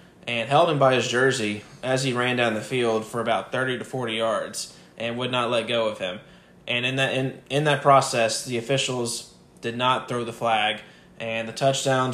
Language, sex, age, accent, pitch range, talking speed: English, male, 20-39, American, 115-130 Hz, 210 wpm